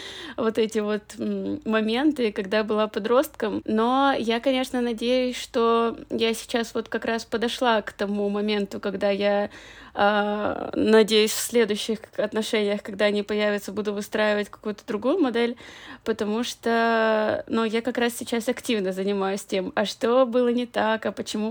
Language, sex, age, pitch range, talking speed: Russian, female, 20-39, 210-250 Hz, 150 wpm